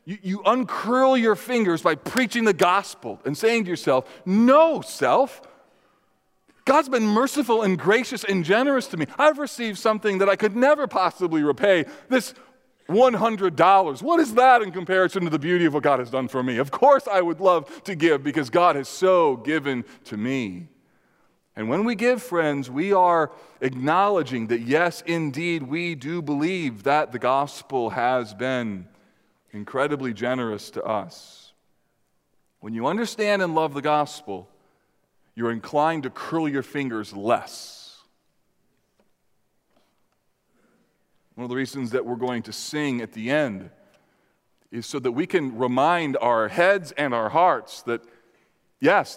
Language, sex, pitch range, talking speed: English, male, 135-210 Hz, 155 wpm